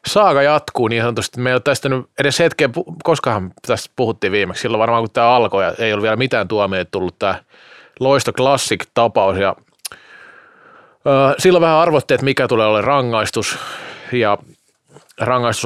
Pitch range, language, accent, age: 110-140 Hz, Finnish, native, 30-49